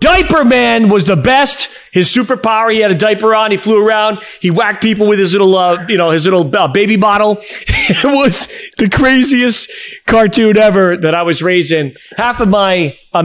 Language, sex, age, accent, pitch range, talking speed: English, male, 40-59, American, 150-205 Hz, 195 wpm